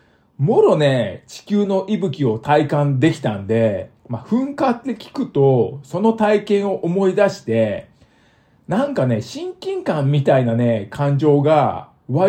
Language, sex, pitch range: Japanese, male, 125-200 Hz